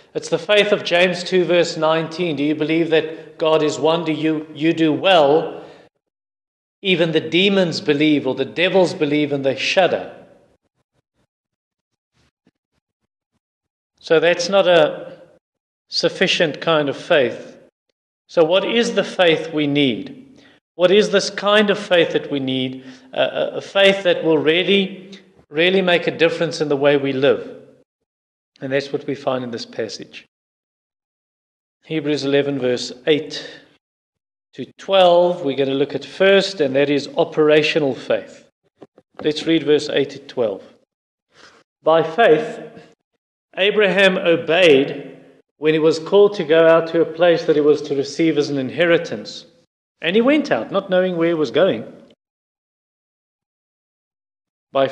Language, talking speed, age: English, 145 wpm, 40-59